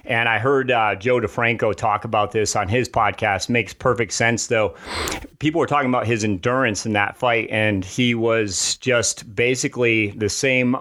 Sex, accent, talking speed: male, American, 180 wpm